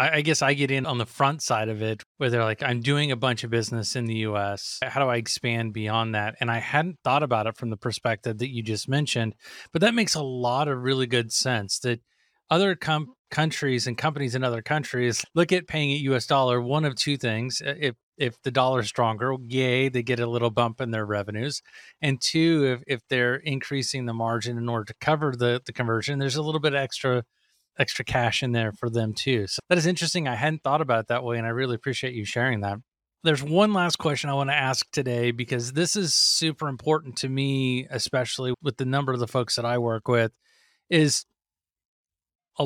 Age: 30-49